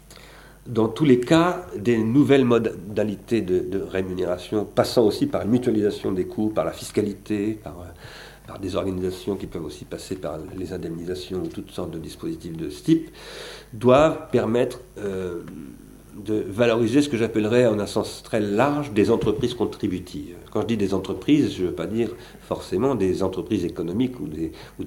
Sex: male